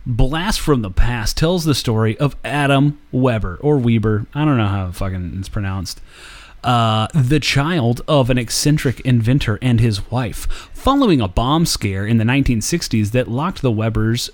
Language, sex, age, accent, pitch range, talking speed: English, male, 30-49, American, 110-145 Hz, 165 wpm